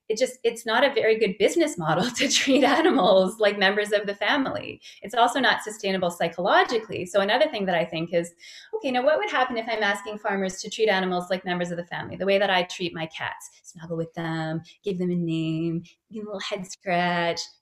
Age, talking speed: 20-39, 225 wpm